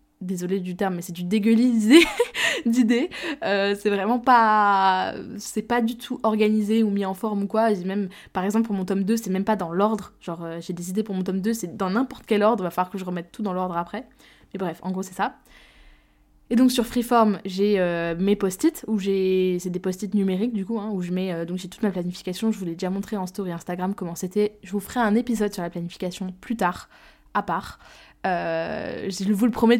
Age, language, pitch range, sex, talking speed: 20-39, French, 185-220 Hz, female, 235 wpm